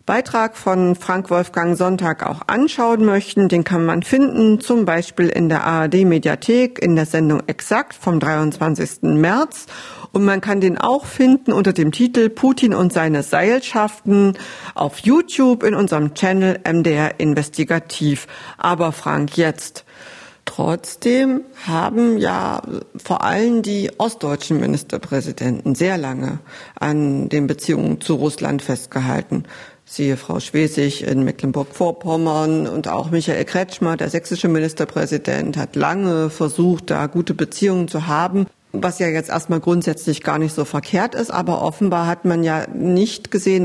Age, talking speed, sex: 50-69, 135 wpm, female